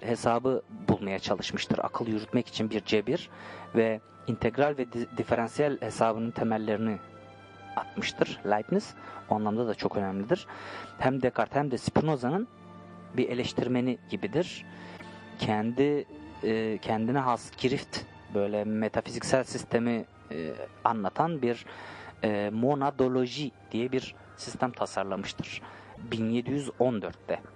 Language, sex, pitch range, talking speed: Turkish, male, 110-145 Hz, 100 wpm